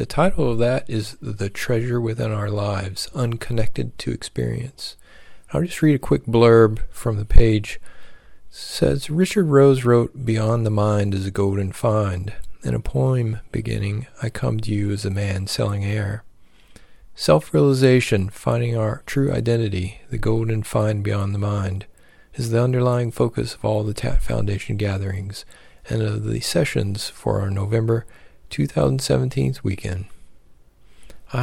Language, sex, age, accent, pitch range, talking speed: English, male, 40-59, American, 105-125 Hz, 150 wpm